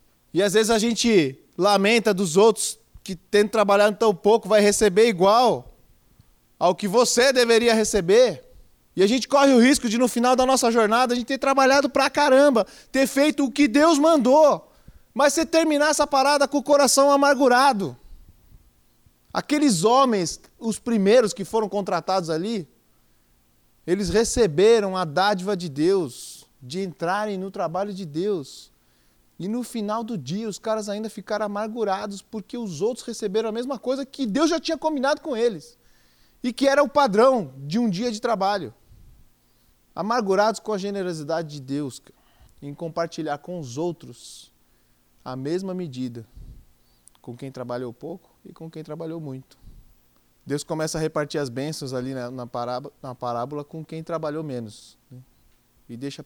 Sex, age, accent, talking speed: male, 20-39, Brazilian, 155 wpm